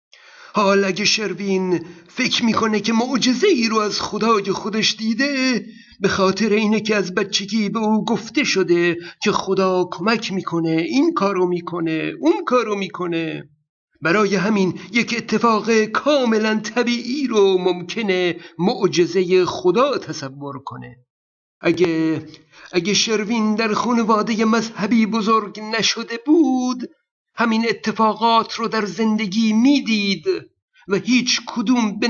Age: 60-79